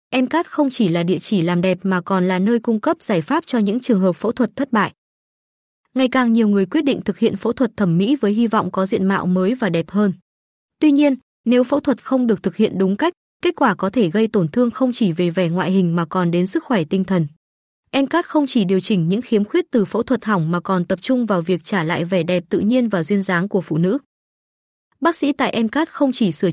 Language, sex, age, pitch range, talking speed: Vietnamese, female, 20-39, 185-250 Hz, 260 wpm